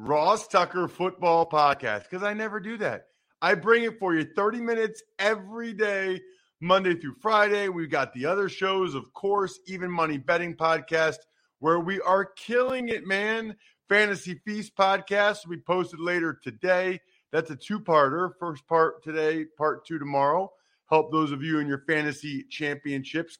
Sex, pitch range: male, 140-185 Hz